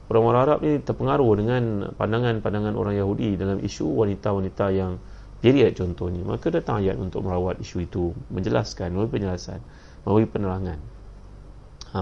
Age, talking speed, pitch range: 30-49, 135 wpm, 95-115 Hz